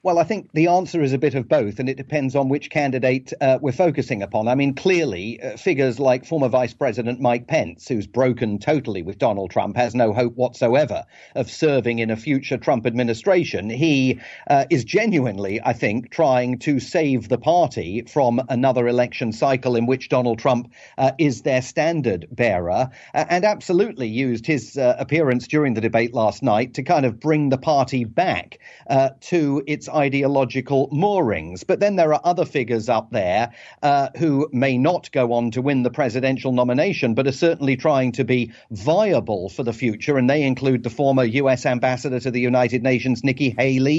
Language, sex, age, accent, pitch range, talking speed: English, male, 40-59, British, 125-145 Hz, 190 wpm